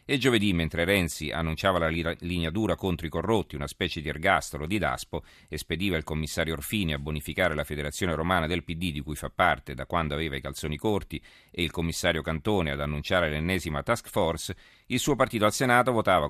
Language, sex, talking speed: Italian, male, 200 wpm